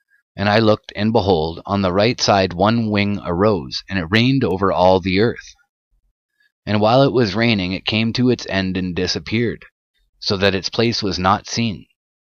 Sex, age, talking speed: male, 30-49, 185 wpm